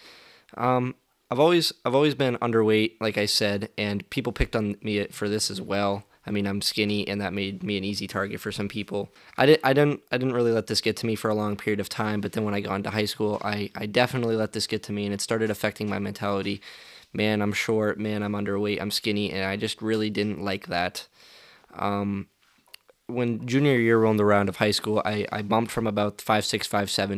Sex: male